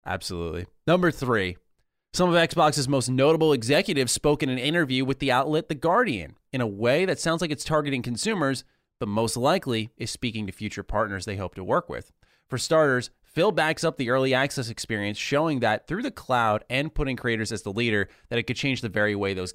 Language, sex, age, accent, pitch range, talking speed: English, male, 30-49, American, 105-140 Hz, 210 wpm